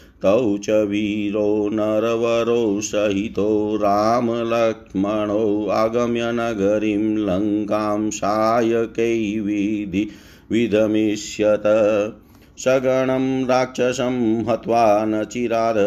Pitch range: 105-120 Hz